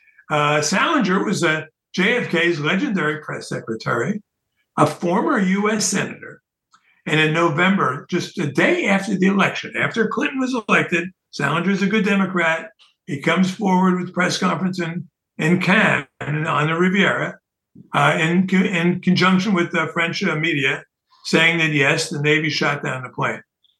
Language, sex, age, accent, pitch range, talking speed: English, male, 60-79, American, 155-190 Hz, 155 wpm